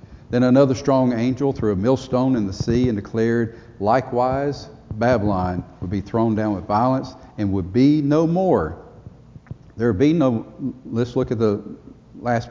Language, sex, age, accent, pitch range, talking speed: English, male, 50-69, American, 105-125 Hz, 165 wpm